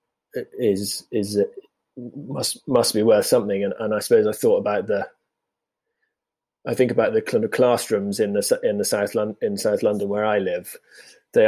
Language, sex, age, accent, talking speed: English, male, 20-39, British, 190 wpm